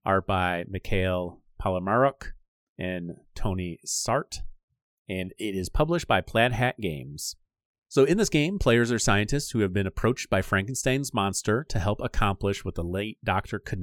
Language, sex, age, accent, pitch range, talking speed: English, male, 30-49, American, 95-120 Hz, 160 wpm